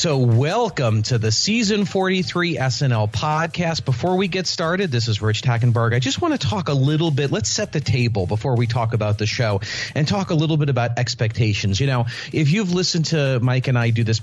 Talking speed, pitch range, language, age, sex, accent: 220 wpm, 110-145 Hz, English, 40-59, male, American